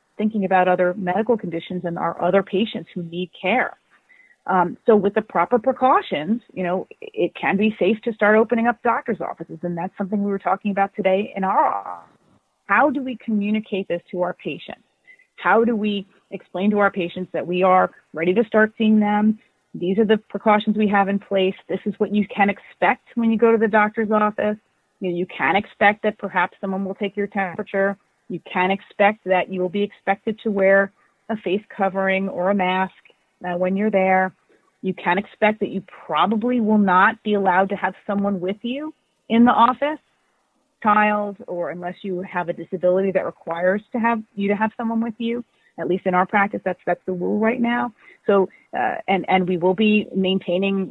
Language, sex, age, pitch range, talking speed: English, female, 30-49, 185-220 Hz, 200 wpm